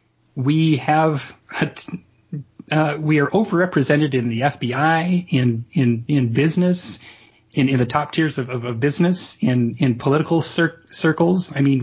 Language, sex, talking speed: English, male, 145 wpm